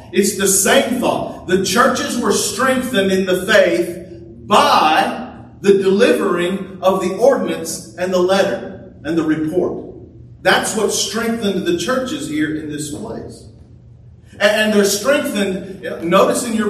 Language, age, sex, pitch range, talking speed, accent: English, 40-59, male, 180-225 Hz, 135 wpm, American